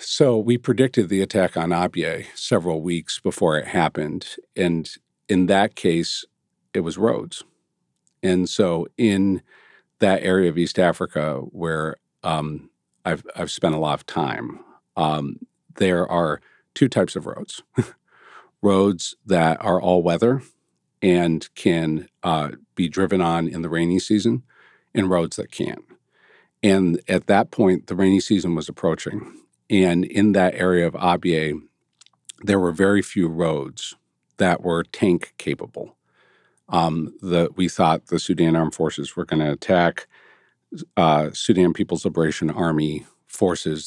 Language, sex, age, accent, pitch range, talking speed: English, male, 50-69, American, 80-95 Hz, 140 wpm